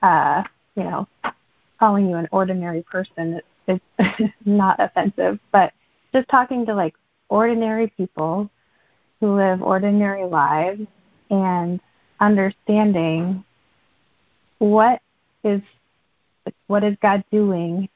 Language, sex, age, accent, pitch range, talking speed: English, female, 30-49, American, 175-210 Hz, 105 wpm